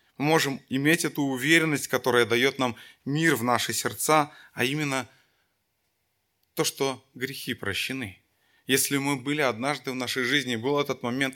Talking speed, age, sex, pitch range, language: 150 wpm, 20-39, male, 115-140 Hz, Russian